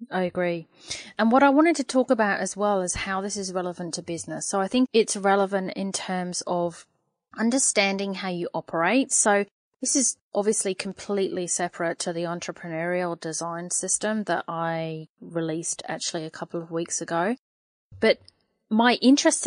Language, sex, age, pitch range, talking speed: English, female, 30-49, 175-220 Hz, 165 wpm